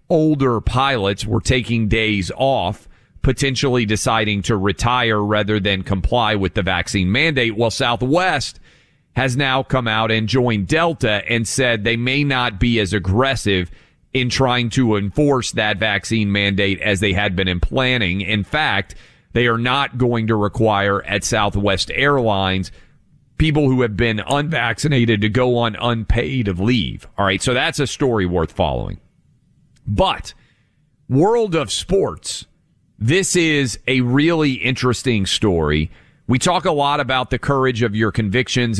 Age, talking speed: 40-59, 150 wpm